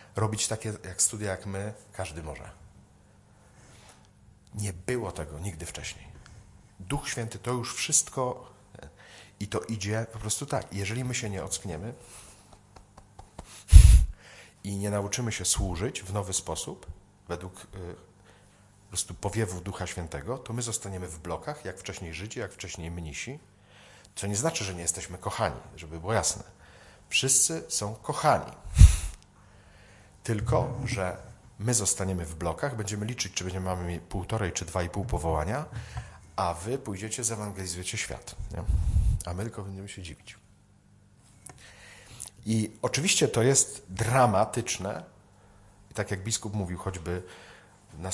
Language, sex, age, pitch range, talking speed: Polish, male, 40-59, 90-110 Hz, 135 wpm